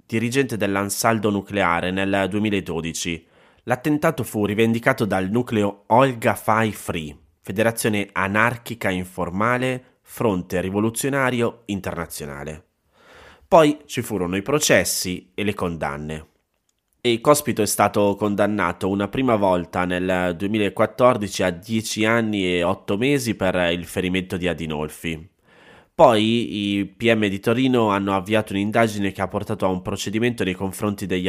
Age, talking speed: 20-39, 125 wpm